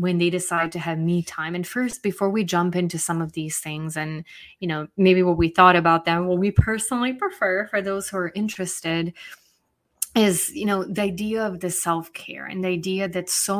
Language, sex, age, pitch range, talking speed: English, female, 20-39, 170-195 Hz, 210 wpm